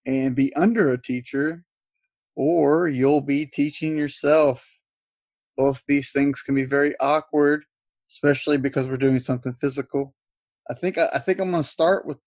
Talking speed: 150 wpm